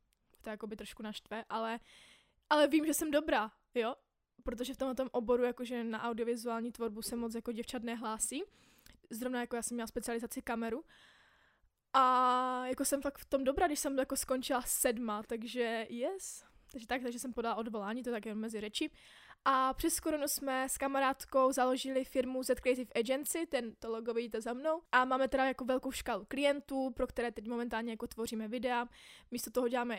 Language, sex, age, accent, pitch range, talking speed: Czech, female, 20-39, native, 235-275 Hz, 185 wpm